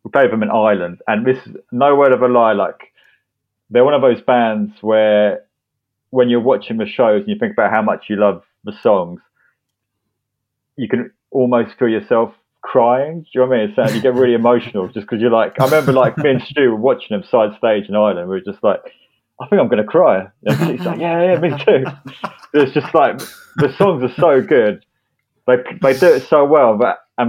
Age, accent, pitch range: 30-49, British, 105-135 Hz